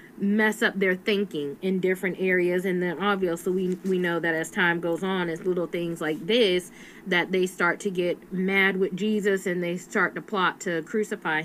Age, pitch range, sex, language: 20-39, 175-205 Hz, female, English